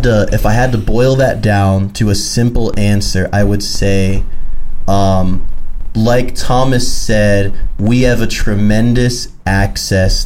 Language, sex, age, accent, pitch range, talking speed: English, male, 20-39, American, 100-115 Hz, 140 wpm